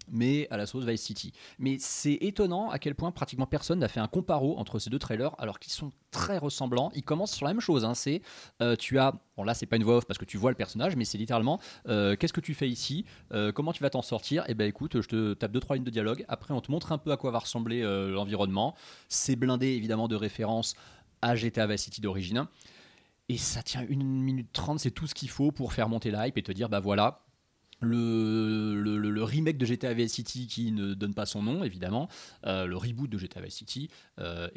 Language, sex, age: French, male, 30-49